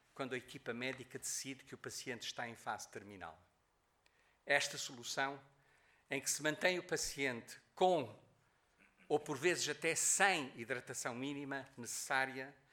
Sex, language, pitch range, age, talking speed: male, Portuguese, 125-145 Hz, 50-69, 135 wpm